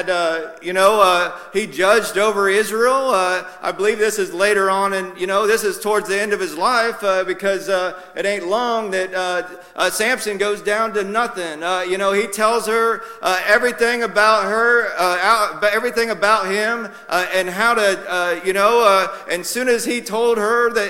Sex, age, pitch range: male, 40-59, 200-245 Hz